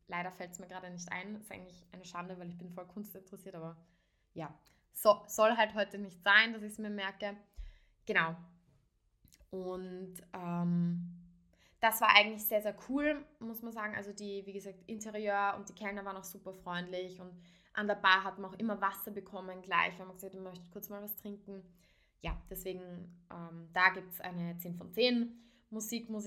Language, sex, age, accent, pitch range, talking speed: German, female, 20-39, German, 185-215 Hz, 200 wpm